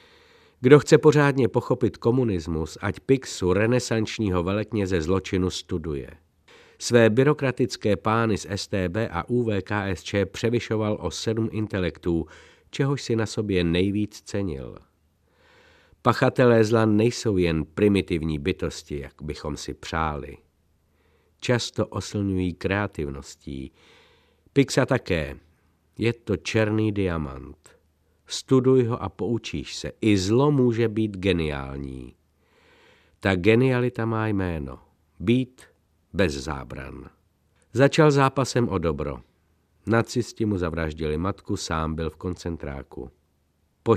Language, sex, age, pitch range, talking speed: Czech, male, 50-69, 80-115 Hz, 105 wpm